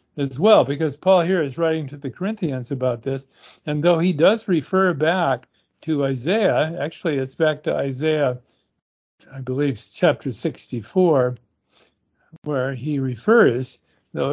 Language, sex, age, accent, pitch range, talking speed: English, male, 60-79, American, 135-175 Hz, 140 wpm